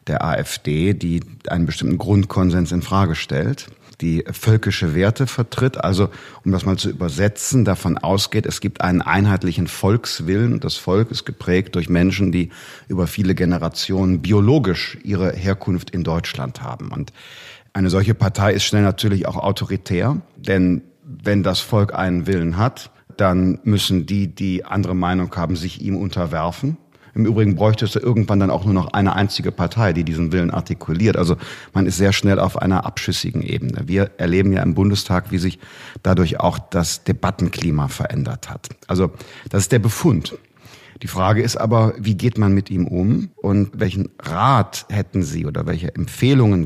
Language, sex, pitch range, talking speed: German, male, 90-110 Hz, 165 wpm